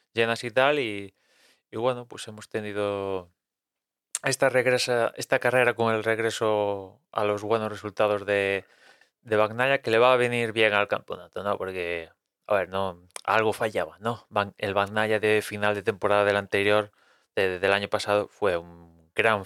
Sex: male